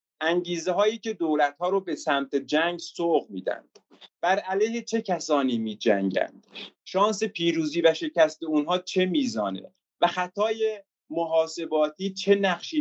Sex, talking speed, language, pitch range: male, 135 wpm, Persian, 140-200 Hz